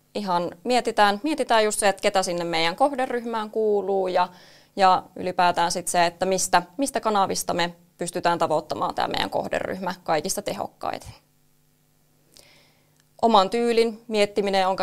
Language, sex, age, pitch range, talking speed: Finnish, female, 20-39, 175-205 Hz, 125 wpm